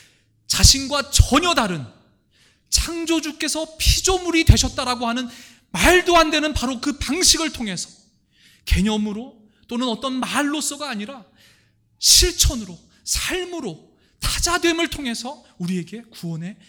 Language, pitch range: Korean, 120-190 Hz